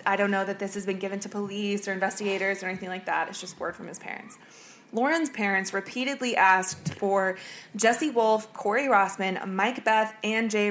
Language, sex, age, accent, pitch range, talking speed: English, female, 20-39, American, 195-230 Hz, 195 wpm